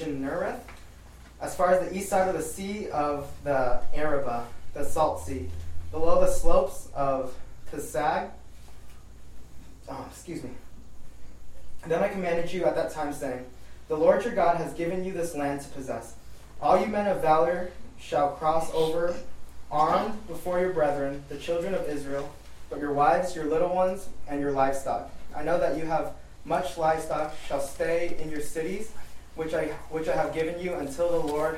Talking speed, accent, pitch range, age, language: 175 wpm, American, 140-175 Hz, 20-39, English